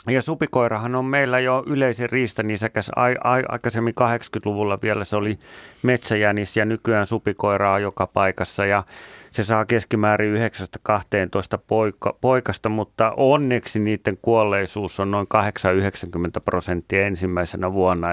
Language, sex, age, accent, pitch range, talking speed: Finnish, male, 30-49, native, 100-130 Hz, 130 wpm